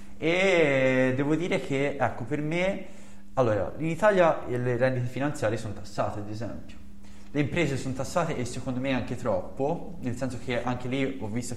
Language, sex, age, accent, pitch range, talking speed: Italian, male, 20-39, native, 110-140 Hz, 170 wpm